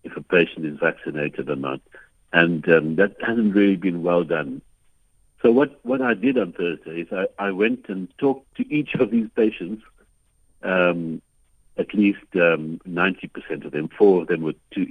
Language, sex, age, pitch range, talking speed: English, male, 60-79, 80-110 Hz, 180 wpm